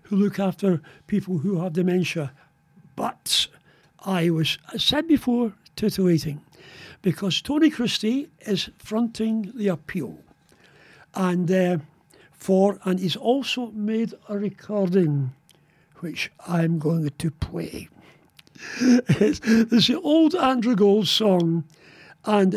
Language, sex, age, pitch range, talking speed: English, male, 60-79, 170-225 Hz, 110 wpm